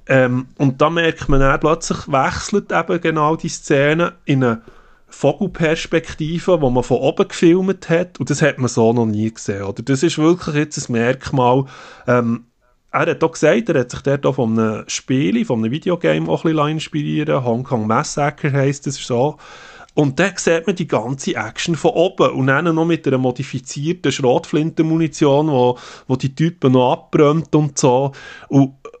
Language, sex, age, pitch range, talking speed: German, male, 20-39, 125-155 Hz, 175 wpm